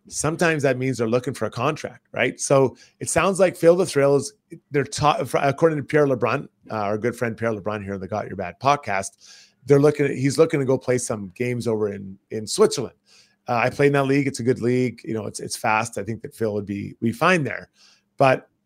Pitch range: 120-145 Hz